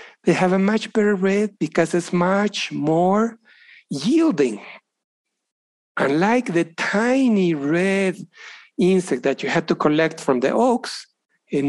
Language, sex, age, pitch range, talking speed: English, male, 60-79, 160-220 Hz, 130 wpm